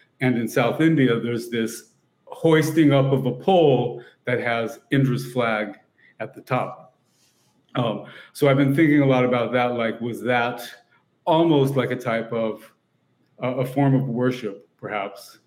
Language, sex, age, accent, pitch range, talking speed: English, male, 40-59, American, 120-140 Hz, 160 wpm